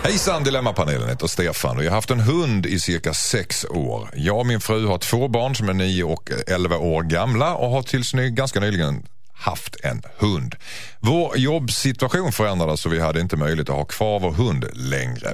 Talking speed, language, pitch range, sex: 205 wpm, Swedish, 90-130 Hz, male